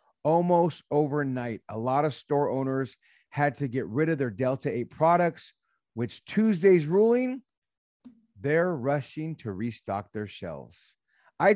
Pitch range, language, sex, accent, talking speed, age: 120-170 Hz, English, male, American, 135 wpm, 40-59